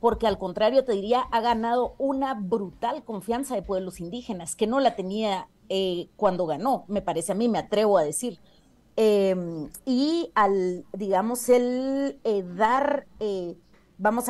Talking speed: 155 wpm